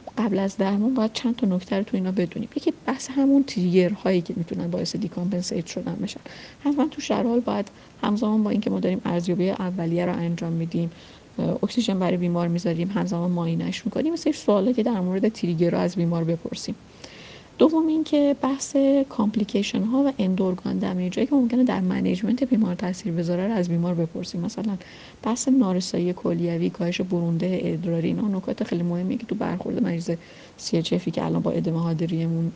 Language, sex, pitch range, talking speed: Persian, female, 175-230 Hz, 175 wpm